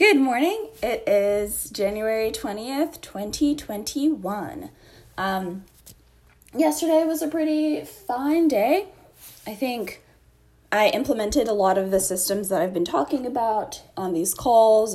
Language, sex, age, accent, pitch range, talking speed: English, female, 10-29, American, 180-260 Hz, 125 wpm